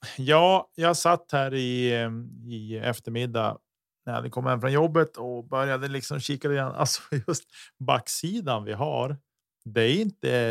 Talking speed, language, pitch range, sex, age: 150 wpm, Swedish, 110-135 Hz, male, 30-49